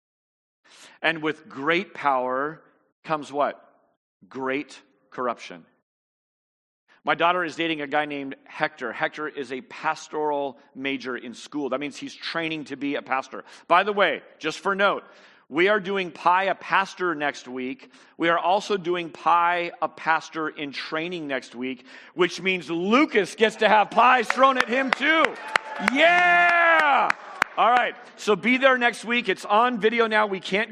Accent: American